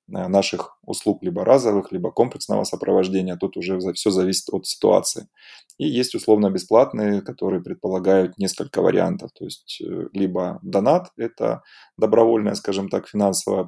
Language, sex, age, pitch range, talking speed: Russian, male, 20-39, 95-105 Hz, 125 wpm